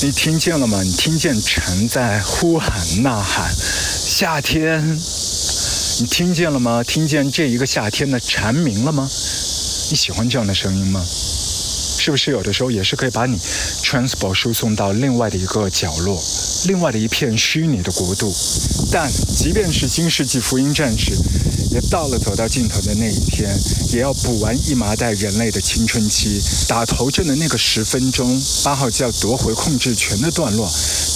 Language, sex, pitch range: Chinese, male, 95-130 Hz